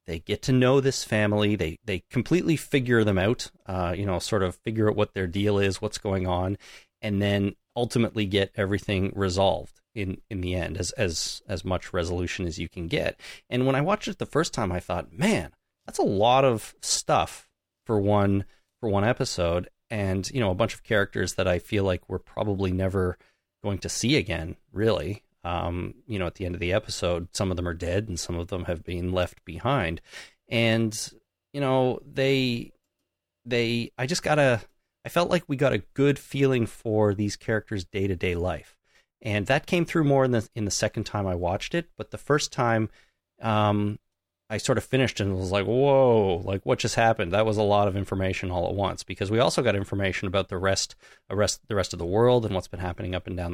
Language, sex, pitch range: English, male, 90-120 Hz